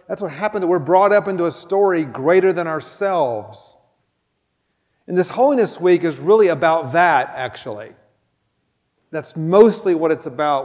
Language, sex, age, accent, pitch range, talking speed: English, male, 40-59, American, 140-170 Hz, 150 wpm